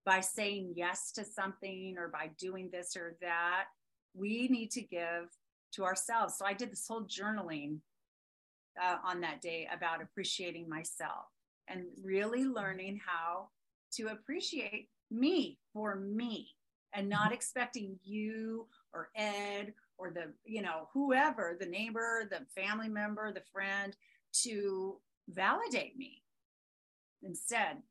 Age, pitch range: 40-59, 175-225 Hz